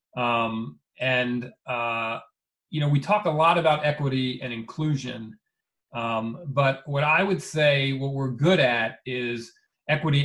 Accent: American